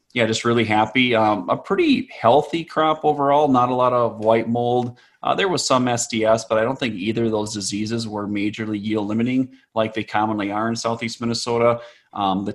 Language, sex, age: English, male, 20-39